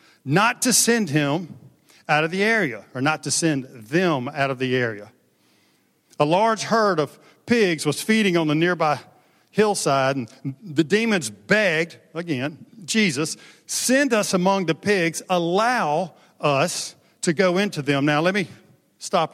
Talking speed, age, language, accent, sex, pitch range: 150 wpm, 50-69, English, American, male, 130-190 Hz